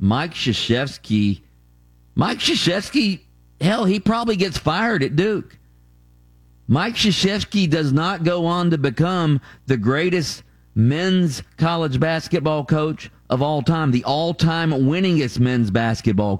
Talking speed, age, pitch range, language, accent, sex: 120 wpm, 50-69, 95-155 Hz, English, American, male